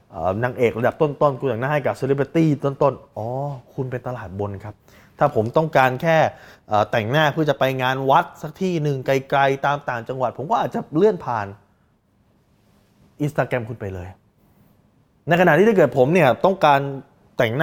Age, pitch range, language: 20-39, 110-145 Hz, Thai